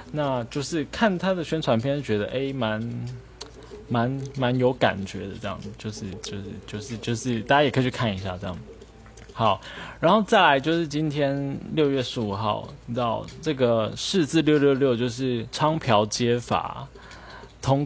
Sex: male